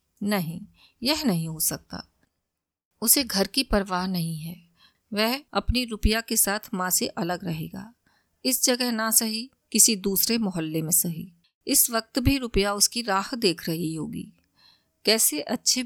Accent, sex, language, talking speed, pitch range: native, female, Hindi, 150 wpm, 190-235 Hz